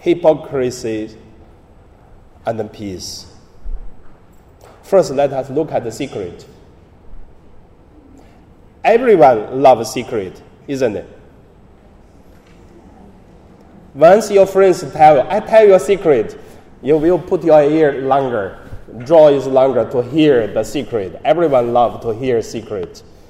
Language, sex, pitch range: Chinese, male, 105-165 Hz